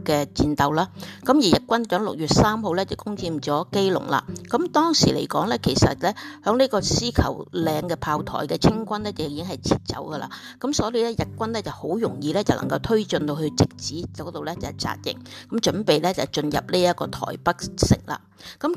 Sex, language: female, Chinese